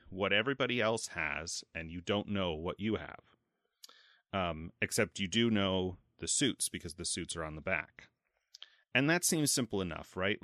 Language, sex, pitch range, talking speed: English, male, 90-115 Hz, 180 wpm